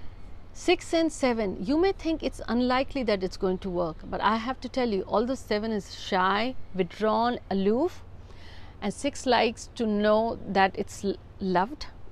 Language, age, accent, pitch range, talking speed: Hindi, 50-69, native, 185-245 Hz, 170 wpm